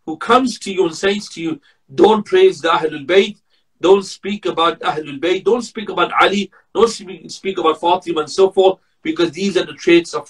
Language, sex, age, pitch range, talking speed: English, male, 50-69, 165-220 Hz, 205 wpm